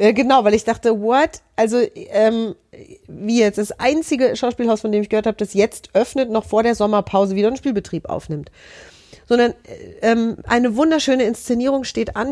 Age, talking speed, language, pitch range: 40-59, 170 wpm, German, 205-245 Hz